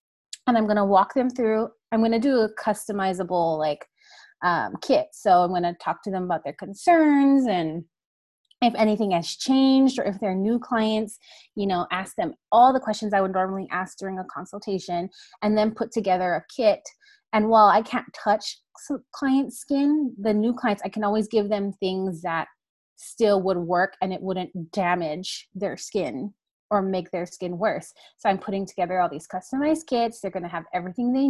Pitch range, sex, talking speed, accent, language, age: 185-225 Hz, female, 190 wpm, American, English, 30-49